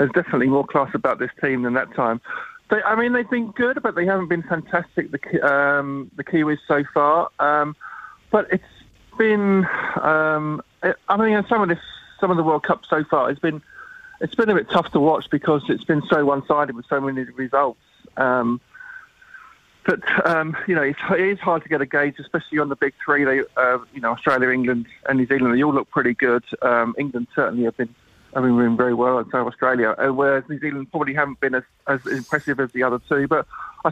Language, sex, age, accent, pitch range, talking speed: English, male, 50-69, British, 130-160 Hz, 220 wpm